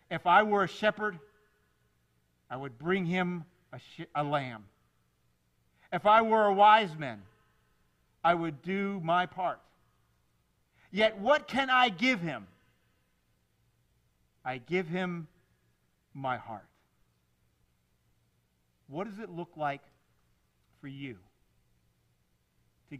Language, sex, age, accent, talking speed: English, male, 50-69, American, 110 wpm